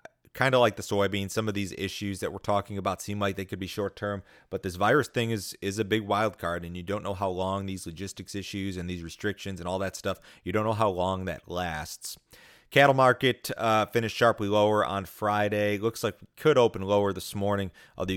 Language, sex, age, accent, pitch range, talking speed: English, male, 30-49, American, 95-110 Hz, 230 wpm